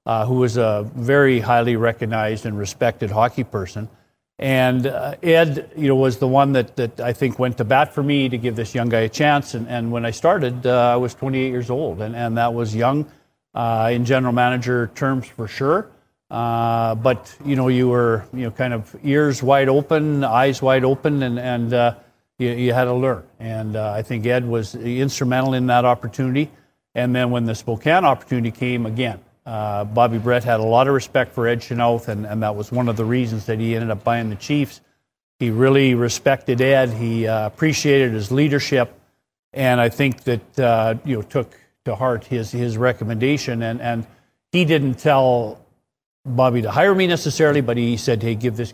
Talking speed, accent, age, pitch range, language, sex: 200 wpm, American, 50-69, 115-135 Hz, English, male